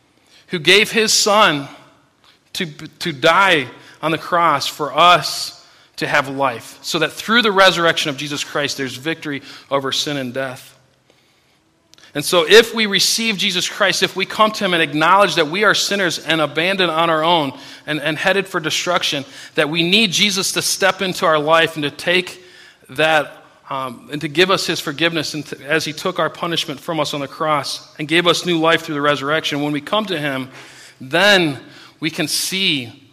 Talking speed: 190 wpm